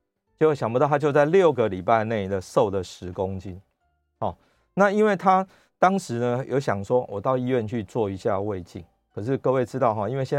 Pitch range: 100-130 Hz